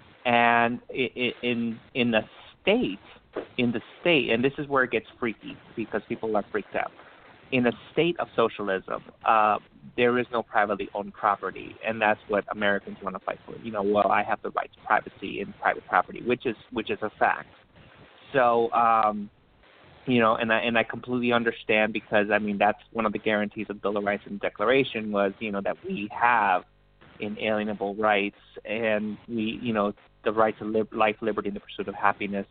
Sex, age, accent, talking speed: male, 30-49, American, 195 wpm